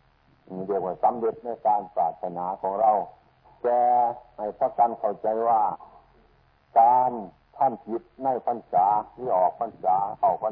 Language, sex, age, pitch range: Thai, male, 60-79, 105-130 Hz